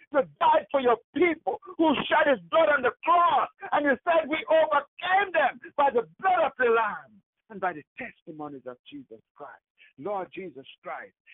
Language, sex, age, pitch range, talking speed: English, male, 60-79, 200-325 Hz, 180 wpm